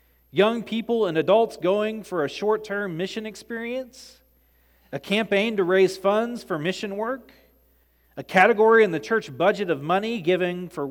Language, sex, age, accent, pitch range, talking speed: English, male, 40-59, American, 160-215 Hz, 155 wpm